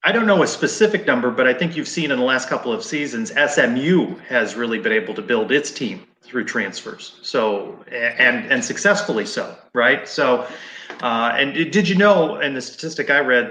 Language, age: English, 30-49